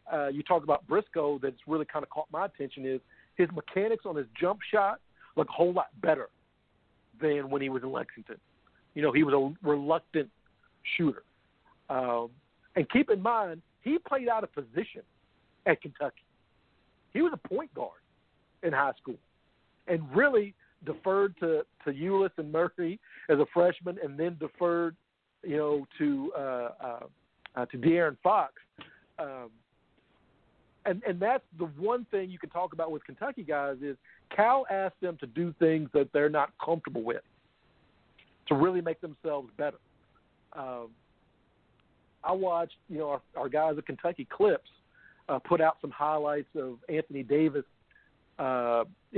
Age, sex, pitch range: 50-69, male, 140-185 Hz